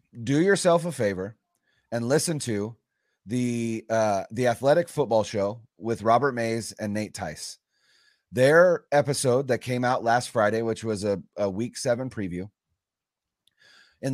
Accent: American